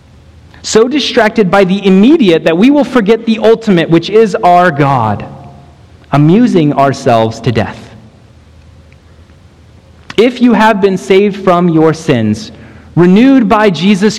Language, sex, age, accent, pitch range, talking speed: English, male, 30-49, American, 120-200 Hz, 125 wpm